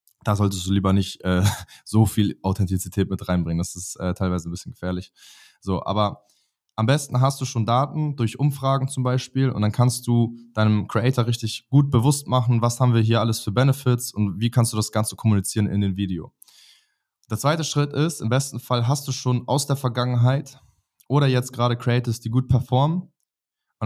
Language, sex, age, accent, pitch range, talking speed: German, male, 20-39, German, 110-130 Hz, 195 wpm